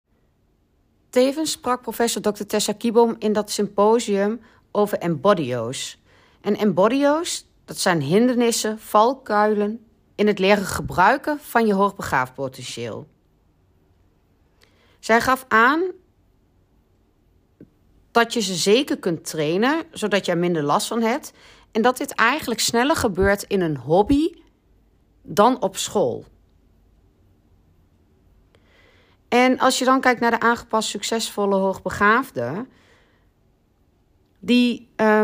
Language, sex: Dutch, female